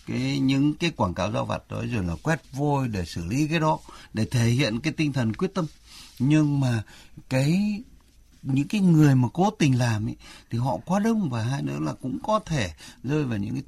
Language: Vietnamese